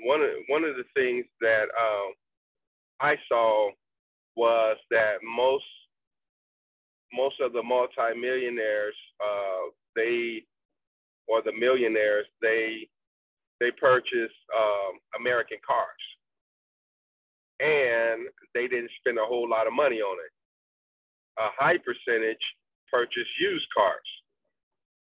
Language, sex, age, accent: English, male, 40-59, American